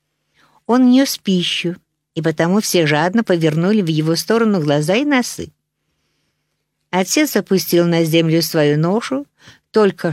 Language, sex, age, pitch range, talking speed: Russian, female, 50-69, 155-190 Hz, 125 wpm